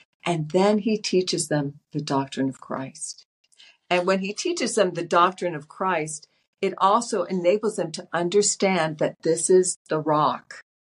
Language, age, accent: English, 50-69, American